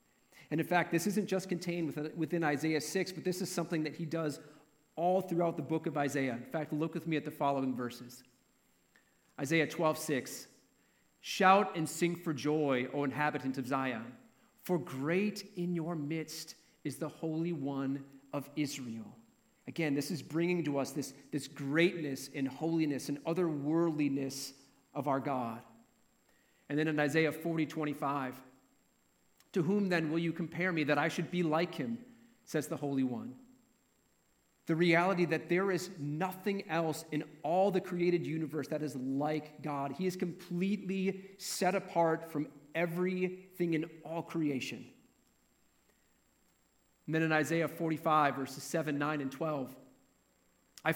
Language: English